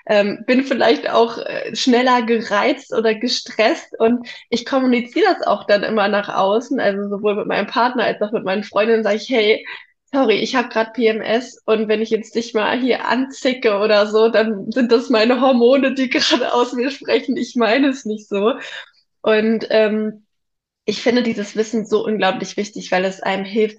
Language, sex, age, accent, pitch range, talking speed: German, female, 10-29, German, 190-225 Hz, 180 wpm